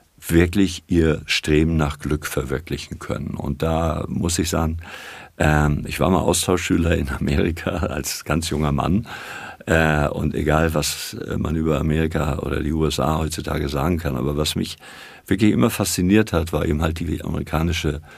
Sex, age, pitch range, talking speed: male, 50-69, 75-90 Hz, 150 wpm